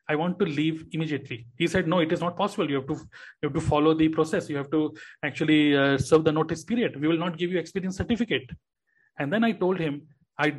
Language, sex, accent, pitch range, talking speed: Hindi, male, native, 140-170 Hz, 245 wpm